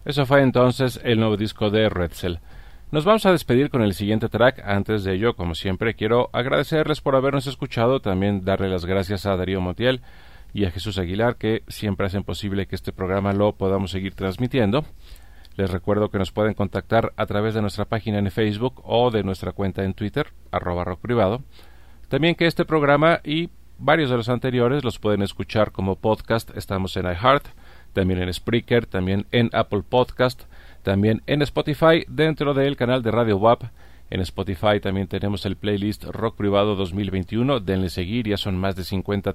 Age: 40-59